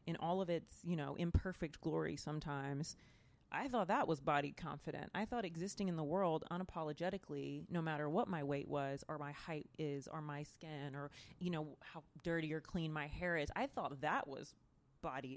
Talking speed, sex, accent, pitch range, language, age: 195 wpm, female, American, 145-180 Hz, English, 30-49